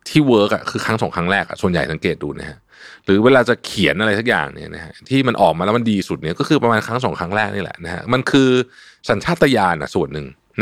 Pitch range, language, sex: 90-120 Hz, Thai, male